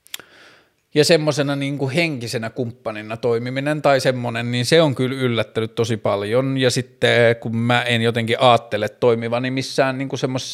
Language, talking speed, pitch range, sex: Finnish, 140 wpm, 115-145 Hz, male